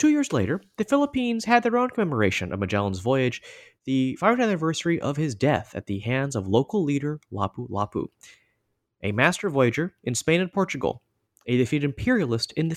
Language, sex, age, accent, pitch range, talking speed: English, male, 30-49, American, 120-175 Hz, 175 wpm